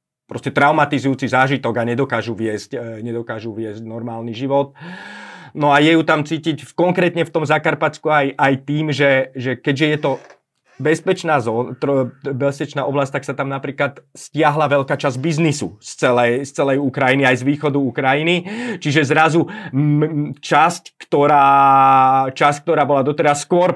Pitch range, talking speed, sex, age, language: 120-145 Hz, 150 wpm, male, 30-49, Slovak